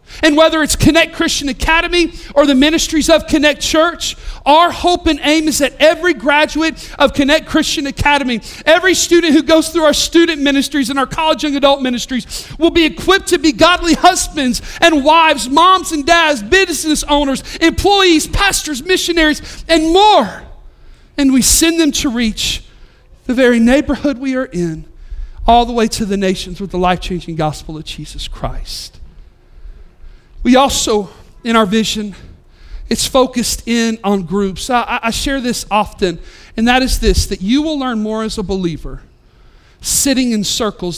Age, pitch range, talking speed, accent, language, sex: 40-59, 210-310 Hz, 165 wpm, American, English, male